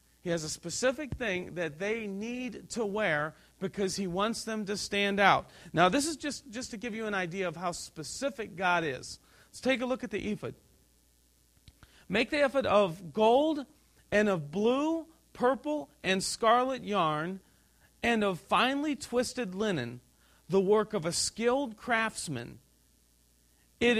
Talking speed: 160 wpm